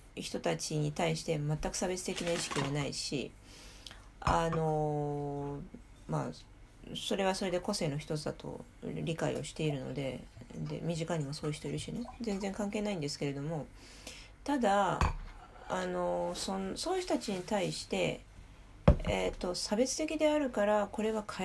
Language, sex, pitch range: Japanese, female, 155-235 Hz